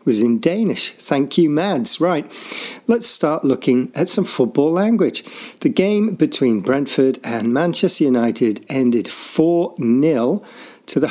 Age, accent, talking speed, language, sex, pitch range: 50-69, British, 140 wpm, English, male, 125-175 Hz